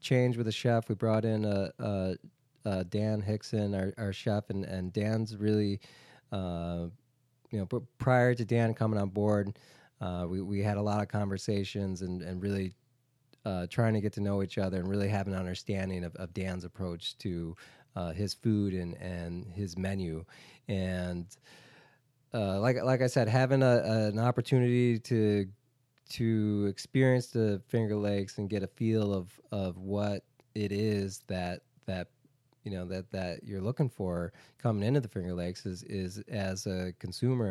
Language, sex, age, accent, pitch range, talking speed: English, male, 20-39, American, 95-120 Hz, 180 wpm